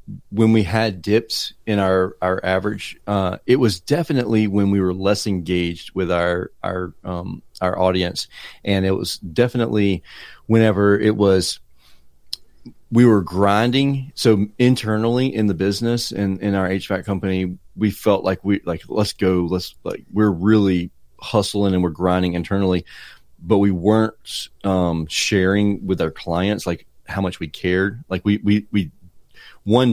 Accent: American